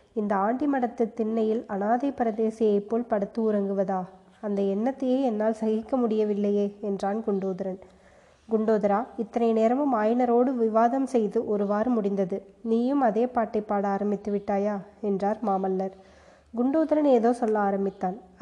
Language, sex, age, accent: Tamil, female, 20-39, native